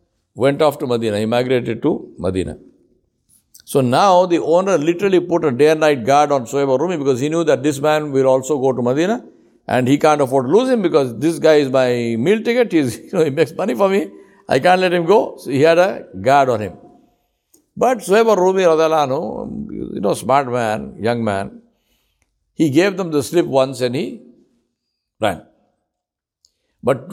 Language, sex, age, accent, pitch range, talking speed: English, male, 60-79, Indian, 125-180 Hz, 185 wpm